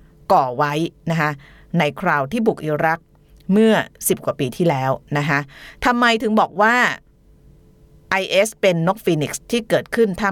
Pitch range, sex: 145-190 Hz, female